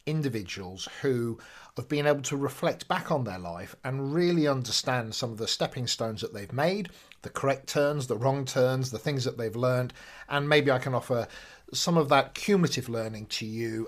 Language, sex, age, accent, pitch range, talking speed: English, male, 40-59, British, 115-155 Hz, 195 wpm